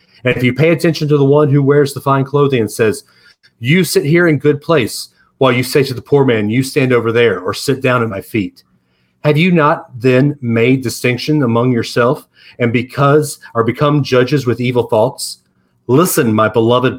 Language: English